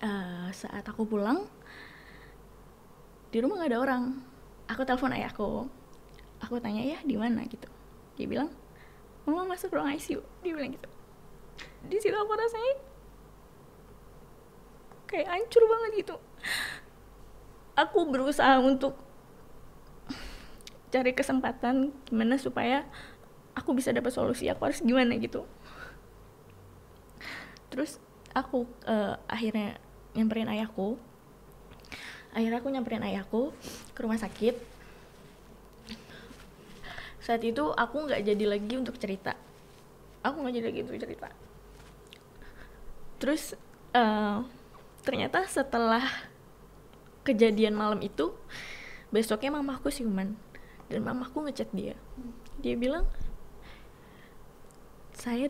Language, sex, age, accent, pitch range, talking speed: Indonesian, female, 20-39, native, 220-275 Hz, 100 wpm